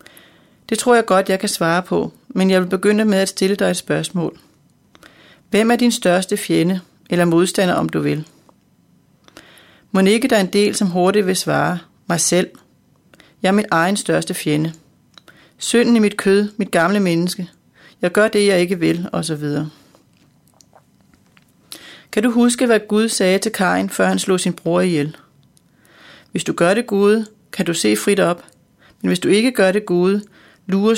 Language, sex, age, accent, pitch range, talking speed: Danish, female, 30-49, native, 175-210 Hz, 180 wpm